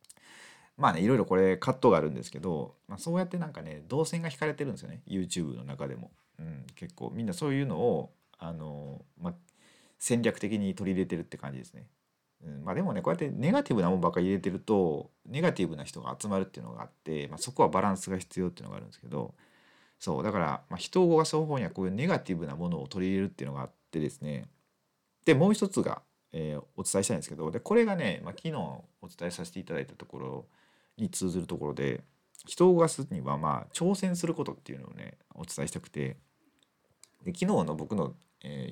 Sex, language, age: male, Japanese, 40-59